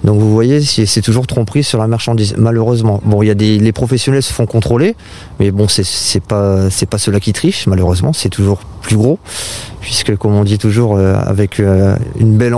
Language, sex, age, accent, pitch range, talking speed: French, male, 30-49, French, 105-120 Hz, 200 wpm